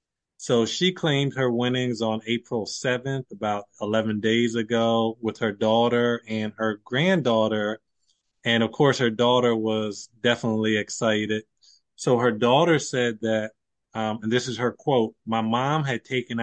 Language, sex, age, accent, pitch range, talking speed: English, male, 20-39, American, 110-120 Hz, 150 wpm